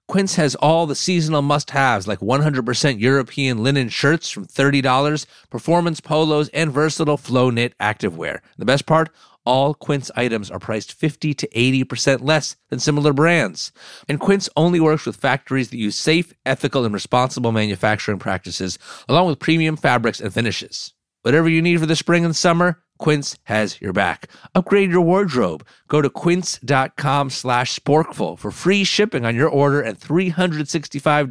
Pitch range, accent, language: 125-160 Hz, American, English